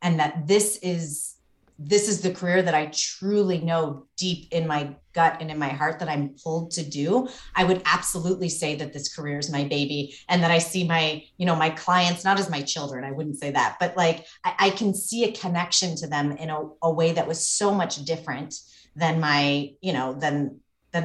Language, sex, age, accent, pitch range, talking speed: English, female, 30-49, American, 150-195 Hz, 220 wpm